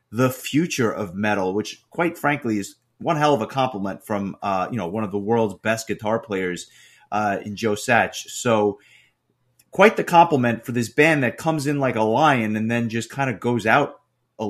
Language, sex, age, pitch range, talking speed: English, male, 30-49, 105-135 Hz, 205 wpm